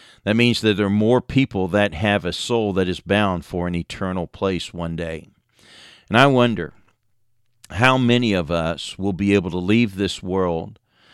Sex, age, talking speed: male, 50-69, 185 wpm